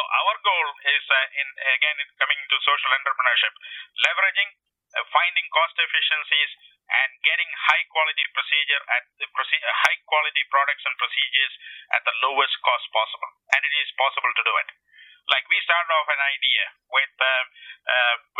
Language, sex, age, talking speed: English, male, 50-69, 165 wpm